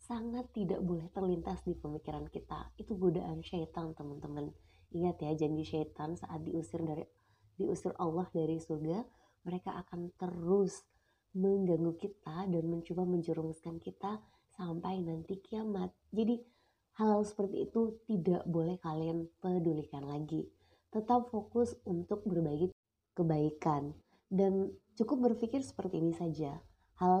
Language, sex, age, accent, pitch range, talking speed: Indonesian, female, 20-39, native, 155-185 Hz, 120 wpm